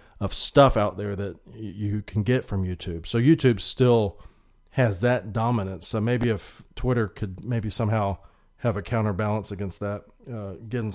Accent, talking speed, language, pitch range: American, 165 wpm, English, 100-125 Hz